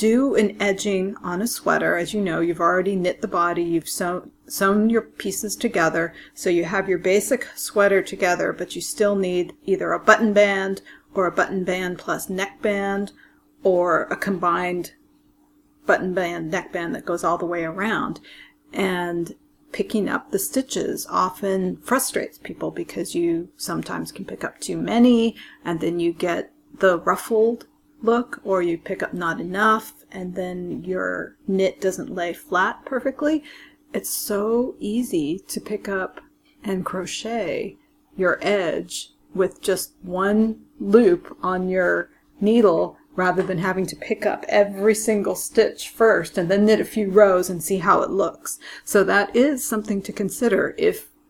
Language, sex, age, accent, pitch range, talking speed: English, female, 40-59, American, 185-235 Hz, 160 wpm